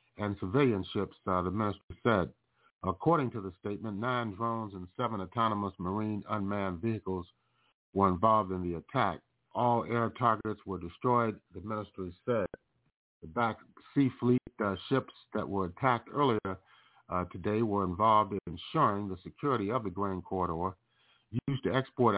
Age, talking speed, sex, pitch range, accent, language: 50-69, 155 wpm, male, 95-115 Hz, American, English